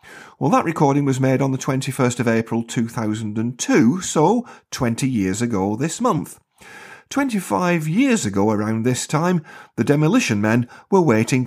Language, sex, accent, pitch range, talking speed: English, male, British, 110-165 Hz, 145 wpm